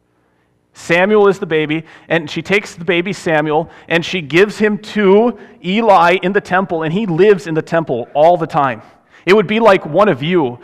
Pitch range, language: 135-195 Hz, English